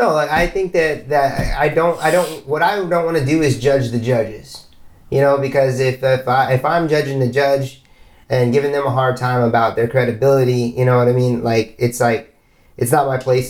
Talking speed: 230 wpm